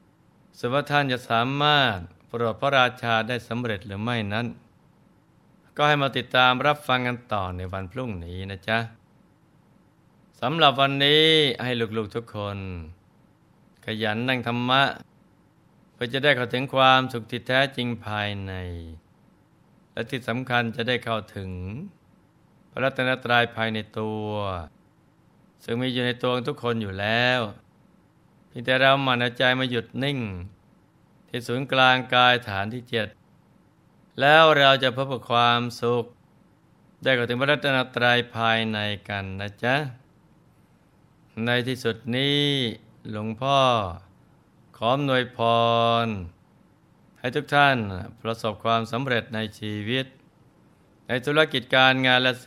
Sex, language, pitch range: male, Thai, 110-130 Hz